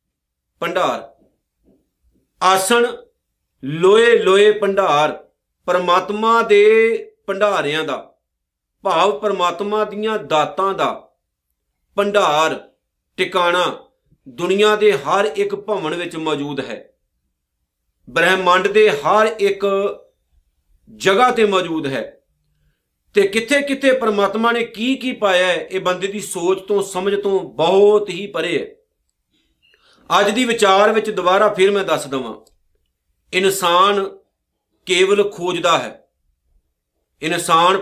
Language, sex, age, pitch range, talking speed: Punjabi, male, 50-69, 155-215 Hz, 90 wpm